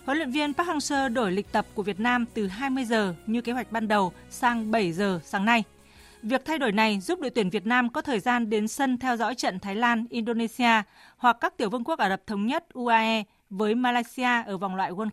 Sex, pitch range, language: female, 215-260 Hz, Vietnamese